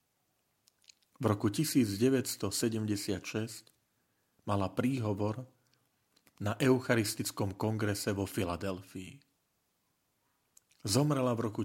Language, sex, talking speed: Slovak, male, 65 wpm